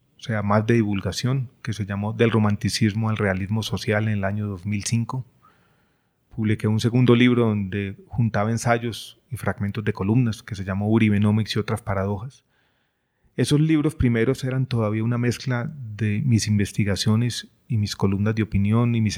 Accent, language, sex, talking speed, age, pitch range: Colombian, Spanish, male, 165 wpm, 30-49, 105-125 Hz